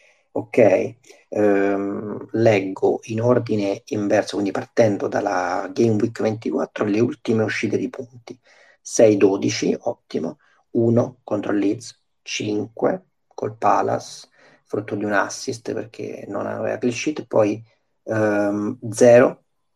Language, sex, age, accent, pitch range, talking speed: Italian, male, 40-59, native, 105-125 Hz, 110 wpm